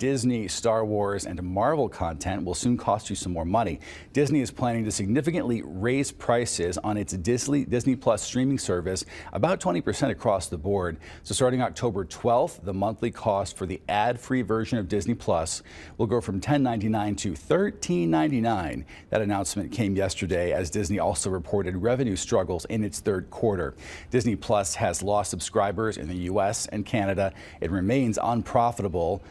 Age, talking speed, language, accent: 40-59, 160 wpm, English, American